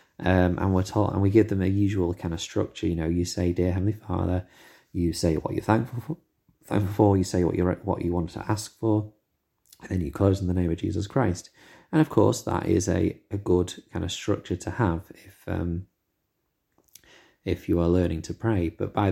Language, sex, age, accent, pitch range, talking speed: English, male, 30-49, British, 90-105 Hz, 225 wpm